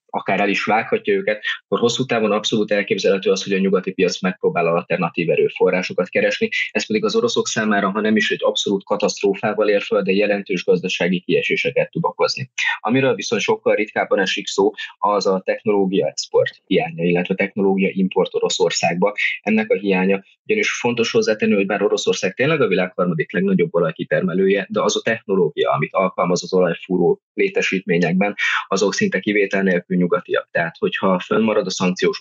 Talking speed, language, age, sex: 160 wpm, Hungarian, 20-39, male